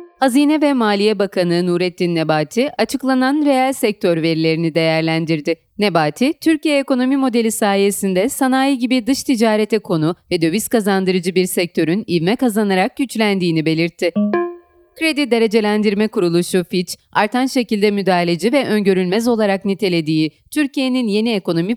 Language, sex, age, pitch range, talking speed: Turkish, female, 40-59, 175-255 Hz, 120 wpm